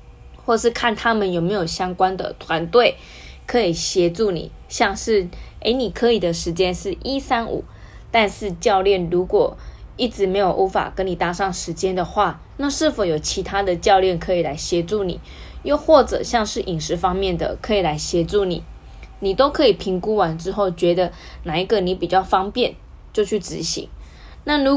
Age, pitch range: 20-39, 175-235 Hz